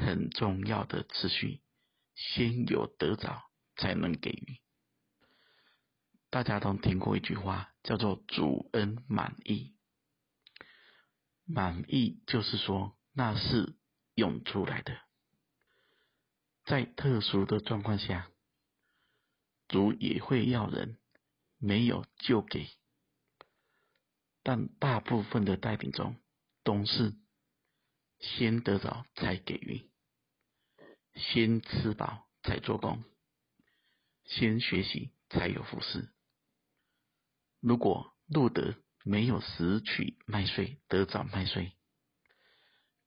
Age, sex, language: 50-69, male, Chinese